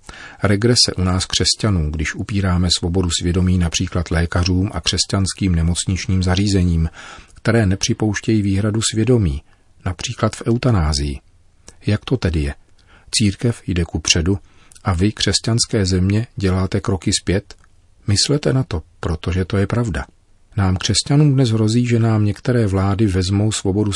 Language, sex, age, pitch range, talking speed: Czech, male, 40-59, 90-105 Hz, 135 wpm